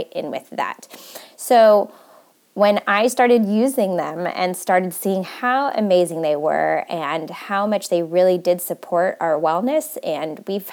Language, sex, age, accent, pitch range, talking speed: English, female, 20-39, American, 175-235 Hz, 150 wpm